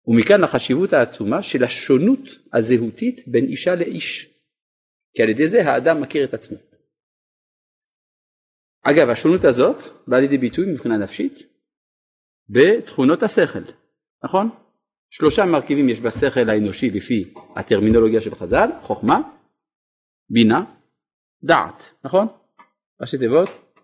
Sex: male